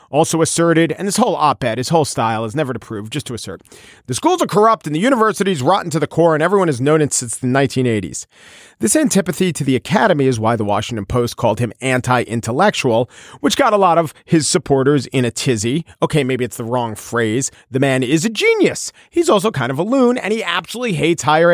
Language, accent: English, American